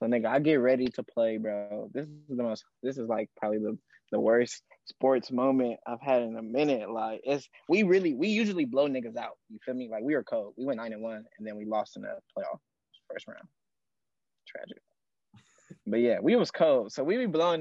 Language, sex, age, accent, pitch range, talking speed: English, male, 20-39, American, 115-150 Hz, 220 wpm